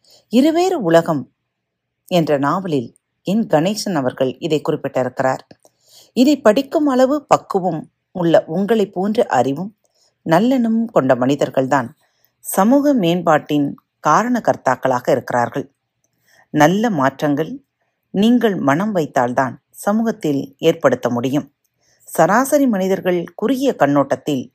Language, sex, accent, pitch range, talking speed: Tamil, female, native, 135-210 Hz, 90 wpm